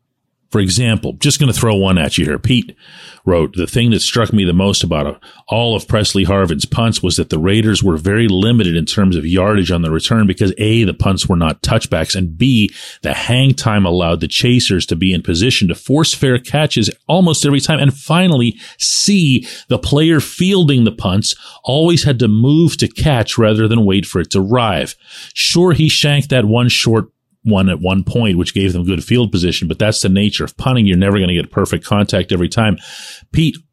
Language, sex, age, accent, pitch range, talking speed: English, male, 40-59, American, 95-125 Hz, 210 wpm